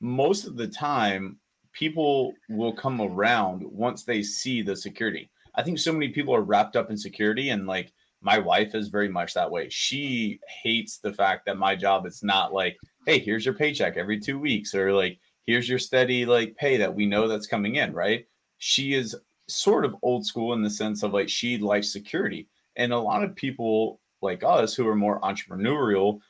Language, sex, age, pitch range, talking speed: English, male, 30-49, 105-125 Hz, 200 wpm